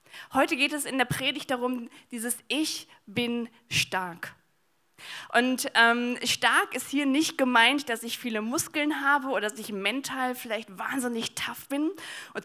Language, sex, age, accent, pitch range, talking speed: German, female, 20-39, German, 215-285 Hz, 155 wpm